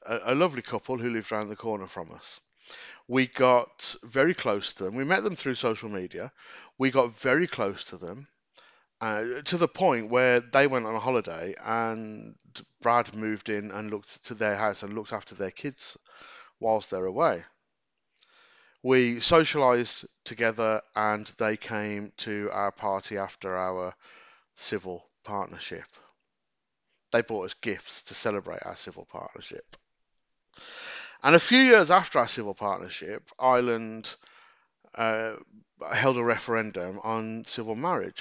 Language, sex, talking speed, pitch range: English, male, 150 wpm, 105-135 Hz